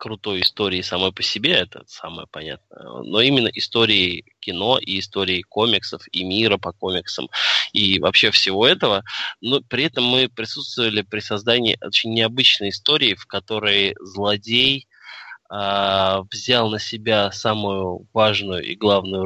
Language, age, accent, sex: Russian, 20-39, native, male